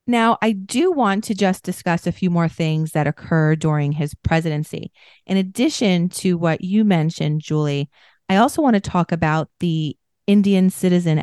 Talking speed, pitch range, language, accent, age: 170 wpm, 160-200 Hz, English, American, 30-49